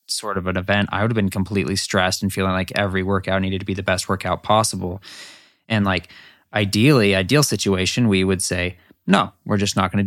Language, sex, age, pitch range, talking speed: English, male, 20-39, 95-105 Hz, 215 wpm